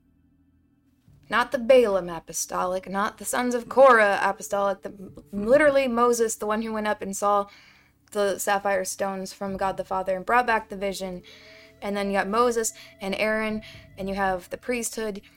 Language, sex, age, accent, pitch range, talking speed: English, female, 20-39, American, 195-235 Hz, 170 wpm